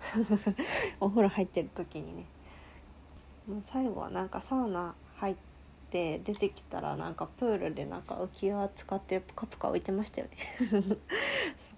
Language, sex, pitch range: Japanese, female, 185-215 Hz